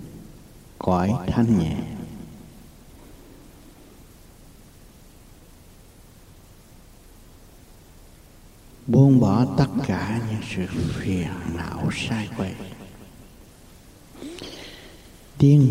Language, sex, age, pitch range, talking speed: Vietnamese, male, 60-79, 90-120 Hz, 55 wpm